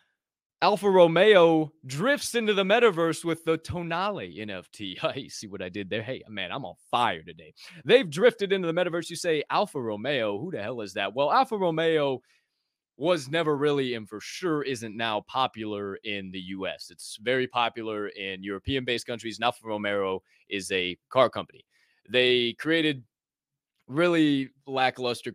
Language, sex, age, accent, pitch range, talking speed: English, male, 20-39, American, 110-160 Hz, 160 wpm